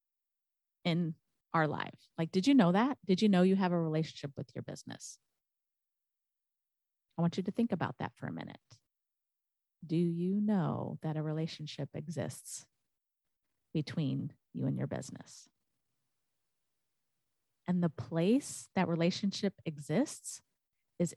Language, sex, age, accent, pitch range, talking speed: English, female, 30-49, American, 145-185 Hz, 135 wpm